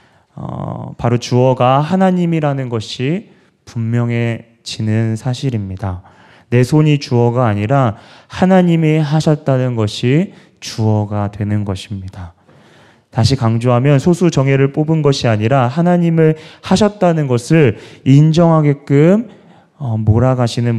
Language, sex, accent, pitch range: Korean, male, native, 110-145 Hz